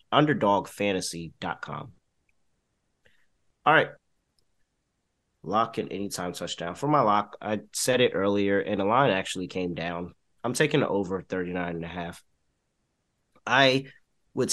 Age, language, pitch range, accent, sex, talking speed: 30-49, English, 90-125 Hz, American, male, 120 wpm